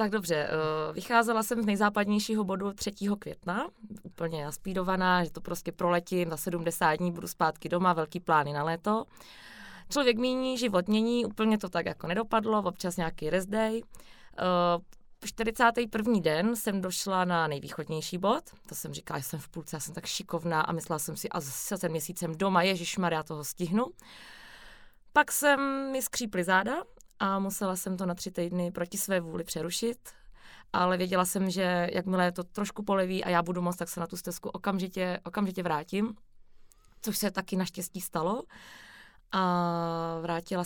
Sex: female